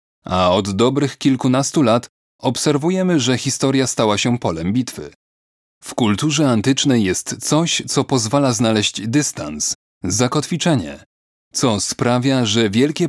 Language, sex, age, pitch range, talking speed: Polish, male, 30-49, 105-135 Hz, 120 wpm